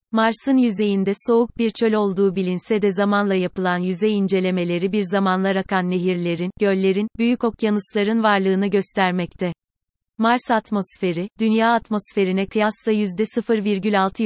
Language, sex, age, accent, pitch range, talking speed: Turkish, female, 30-49, native, 195-225 Hz, 115 wpm